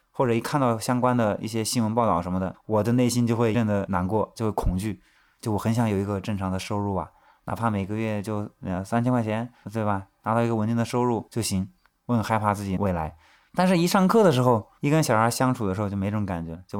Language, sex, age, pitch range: Chinese, male, 20-39, 100-130 Hz